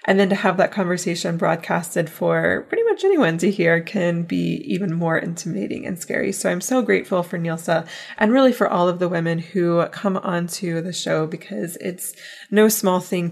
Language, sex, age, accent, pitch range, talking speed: English, female, 20-39, American, 170-200 Hz, 195 wpm